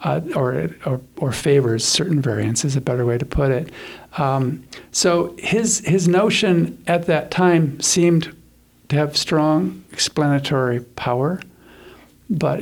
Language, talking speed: English, 140 wpm